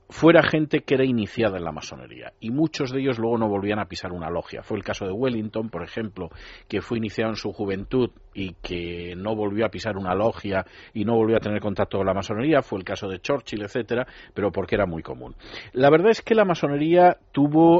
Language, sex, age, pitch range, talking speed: Spanish, male, 40-59, 100-135 Hz, 225 wpm